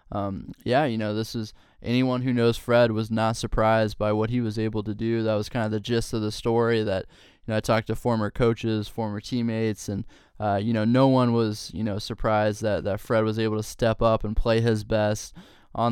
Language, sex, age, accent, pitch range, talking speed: English, male, 20-39, American, 105-115 Hz, 235 wpm